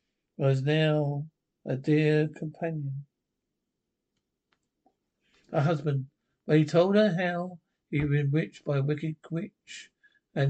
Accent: British